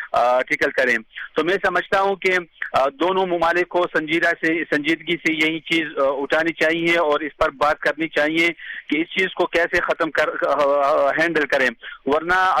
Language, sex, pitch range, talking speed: Urdu, male, 150-175 Hz, 160 wpm